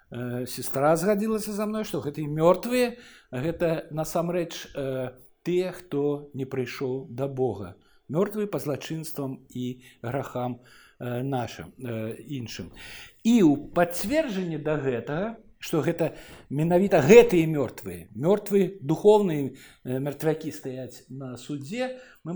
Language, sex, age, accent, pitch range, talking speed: Russian, male, 50-69, native, 140-215 Hz, 115 wpm